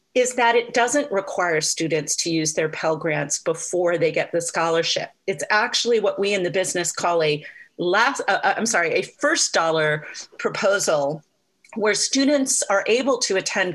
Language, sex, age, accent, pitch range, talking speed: English, female, 40-59, American, 170-230 Hz, 170 wpm